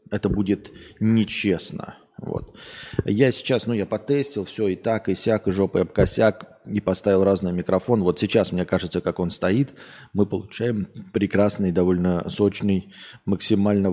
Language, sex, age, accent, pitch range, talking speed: Russian, male, 20-39, native, 90-115 Hz, 145 wpm